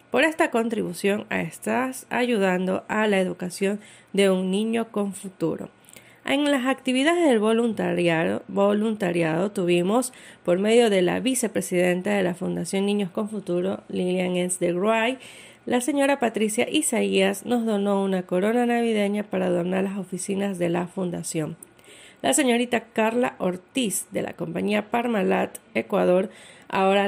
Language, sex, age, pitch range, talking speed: Spanish, female, 30-49, 185-240 Hz, 135 wpm